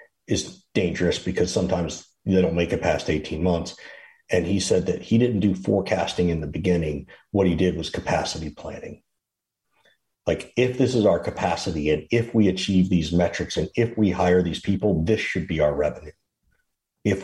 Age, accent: 50-69, American